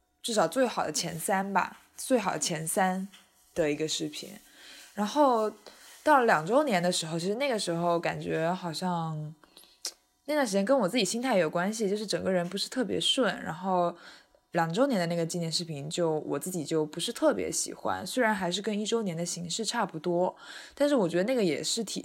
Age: 20-39